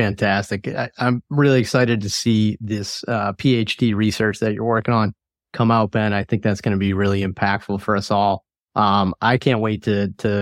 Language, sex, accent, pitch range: English, male, American, 95-115 Hz